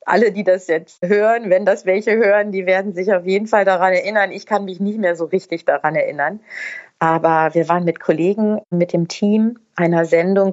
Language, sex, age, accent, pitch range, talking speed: German, female, 30-49, German, 165-205 Hz, 205 wpm